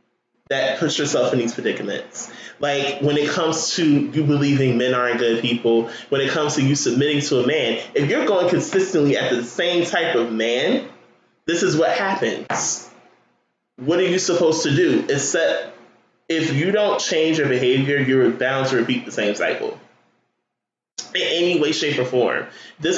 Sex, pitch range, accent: male, 125-170 Hz, American